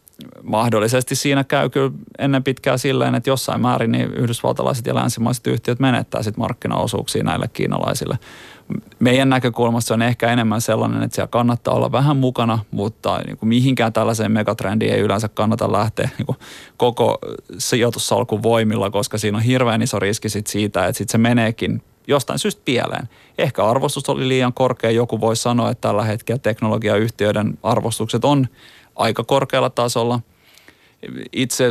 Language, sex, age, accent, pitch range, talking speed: Finnish, male, 30-49, native, 110-125 Hz, 150 wpm